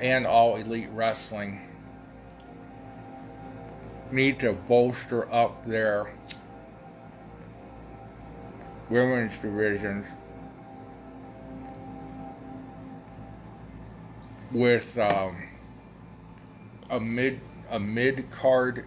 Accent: American